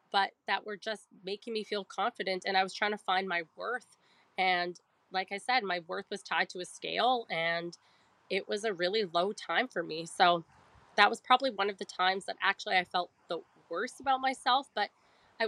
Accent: American